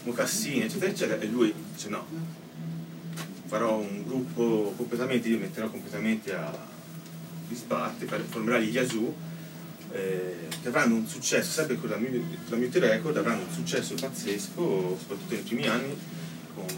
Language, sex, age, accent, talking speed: Italian, male, 30-49, native, 140 wpm